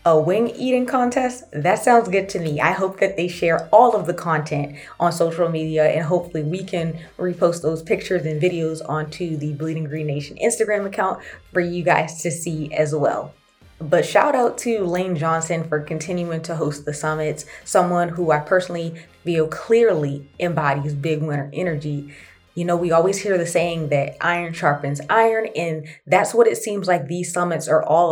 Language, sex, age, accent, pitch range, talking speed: English, female, 20-39, American, 155-180 Hz, 185 wpm